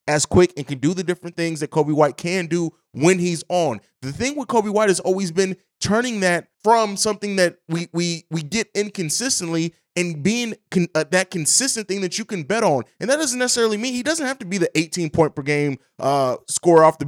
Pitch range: 165-215 Hz